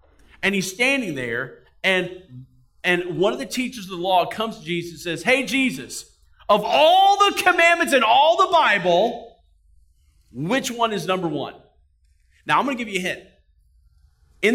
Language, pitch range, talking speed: English, 165-265 Hz, 175 wpm